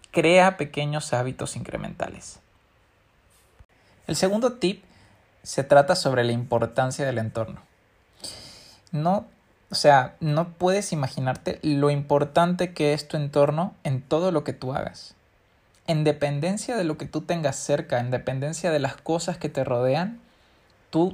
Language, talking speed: Spanish, 135 wpm